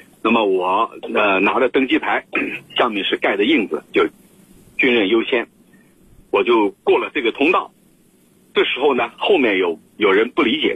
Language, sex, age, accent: Chinese, male, 50-69, native